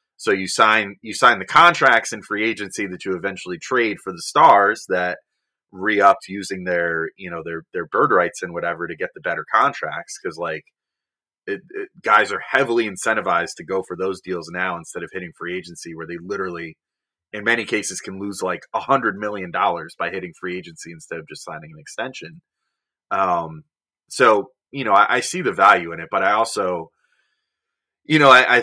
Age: 30-49